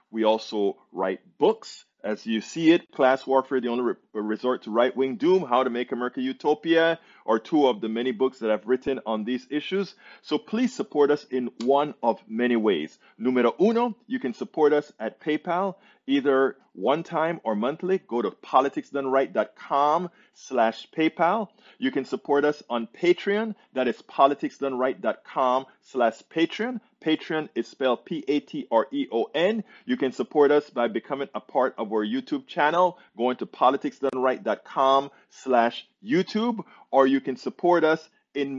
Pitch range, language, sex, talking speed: 125-170 Hz, English, male, 150 wpm